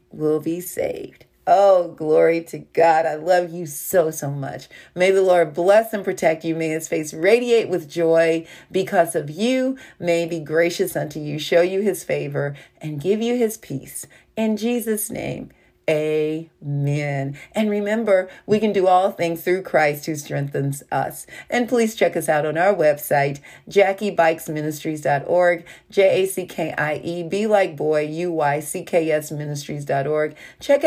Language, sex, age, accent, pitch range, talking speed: English, female, 40-59, American, 155-200 Hz, 170 wpm